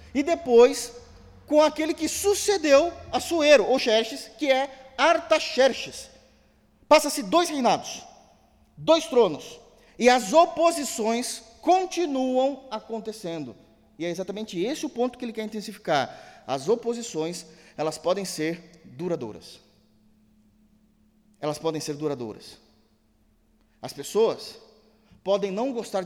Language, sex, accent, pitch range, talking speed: Portuguese, male, Brazilian, 185-260 Hz, 110 wpm